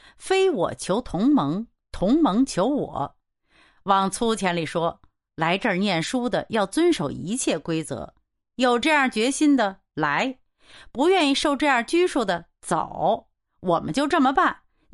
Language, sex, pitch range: Chinese, female, 195-295 Hz